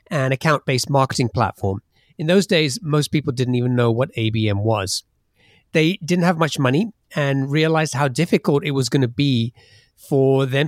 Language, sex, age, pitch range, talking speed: English, male, 40-59, 120-155 Hz, 175 wpm